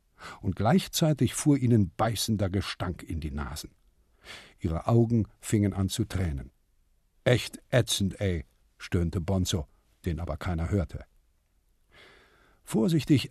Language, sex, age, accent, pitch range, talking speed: German, male, 50-69, German, 95-130 Hz, 115 wpm